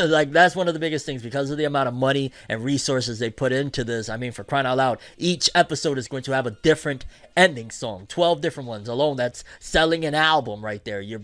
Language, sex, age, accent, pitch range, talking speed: English, male, 20-39, American, 120-160 Hz, 245 wpm